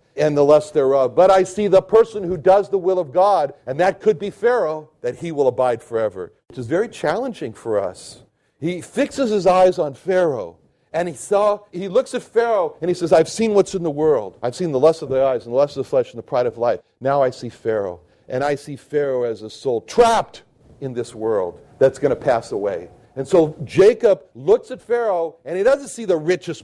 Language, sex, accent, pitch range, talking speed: English, male, American, 150-210 Hz, 230 wpm